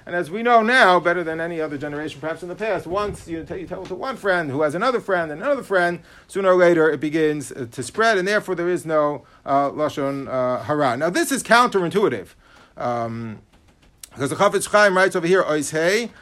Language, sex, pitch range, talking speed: English, male, 155-225 Hz, 220 wpm